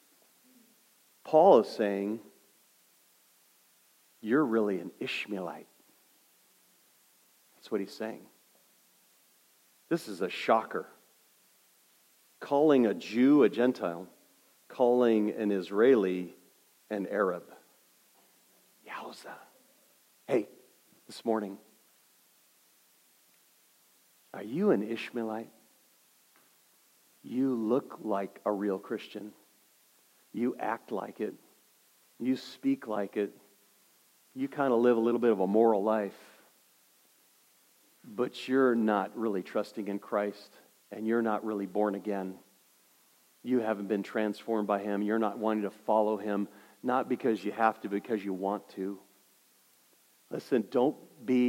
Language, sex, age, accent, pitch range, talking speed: English, male, 50-69, American, 100-125 Hz, 110 wpm